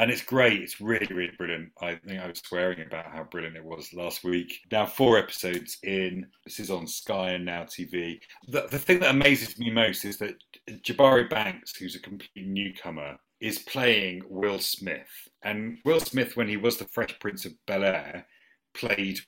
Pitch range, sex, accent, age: 90-120 Hz, male, British, 40-59